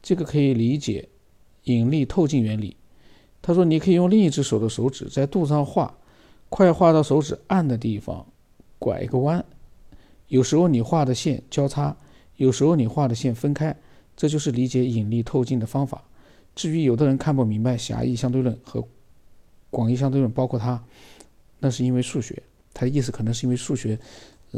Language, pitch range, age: Chinese, 115-140 Hz, 50-69